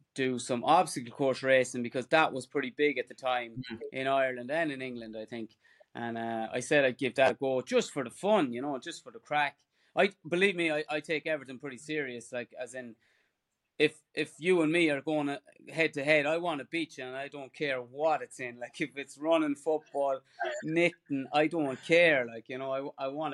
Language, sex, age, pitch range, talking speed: English, male, 20-39, 125-155 Hz, 225 wpm